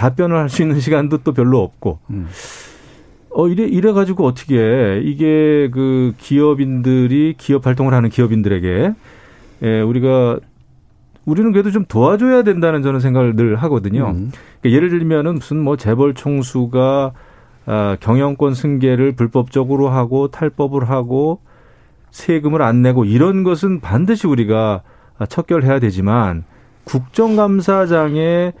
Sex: male